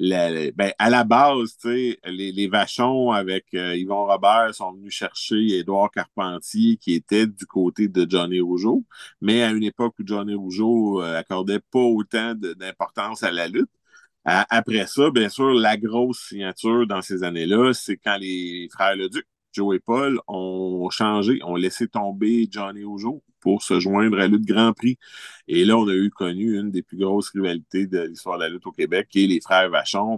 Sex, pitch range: male, 95-115 Hz